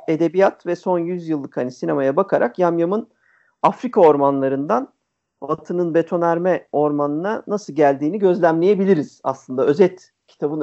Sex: male